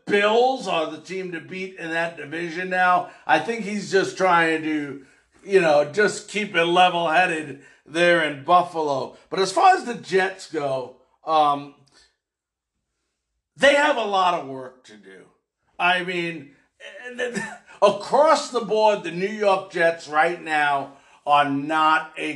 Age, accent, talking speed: 50-69, American, 150 wpm